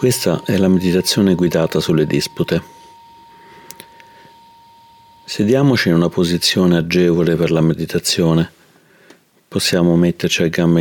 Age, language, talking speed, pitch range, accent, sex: 40-59, Italian, 105 wpm, 85-130 Hz, native, male